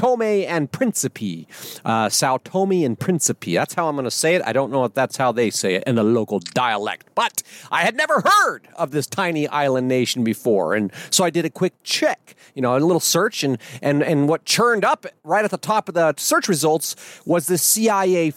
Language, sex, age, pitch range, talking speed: English, male, 40-59, 130-190 Hz, 220 wpm